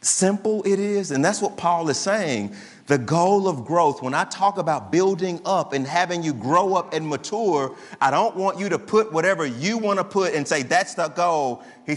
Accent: American